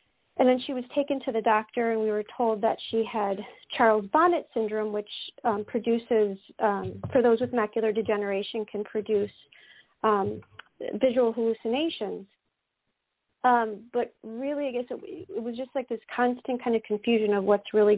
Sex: female